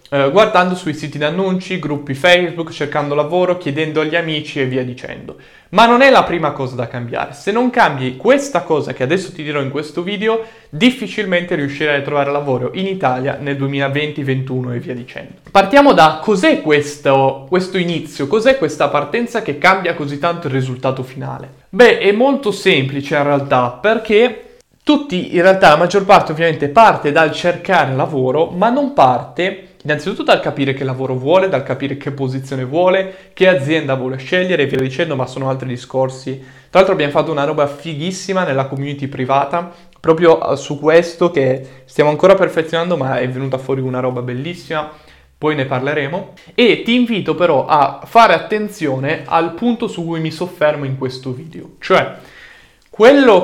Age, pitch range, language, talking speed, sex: 20-39, 135-185 Hz, Italian, 170 wpm, male